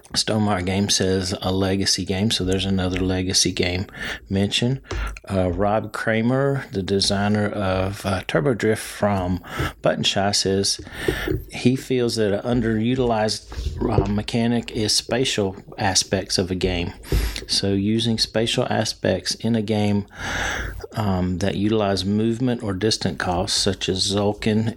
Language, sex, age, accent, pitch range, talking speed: English, male, 40-59, American, 95-110 Hz, 135 wpm